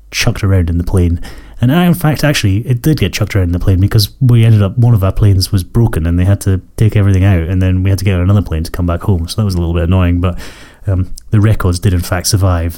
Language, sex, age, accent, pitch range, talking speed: English, male, 30-49, British, 90-115 Hz, 295 wpm